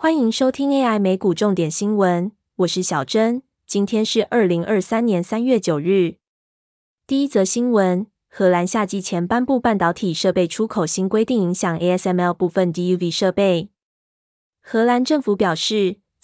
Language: Chinese